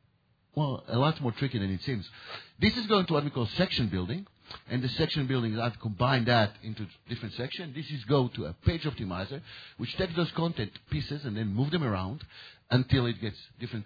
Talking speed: 210 wpm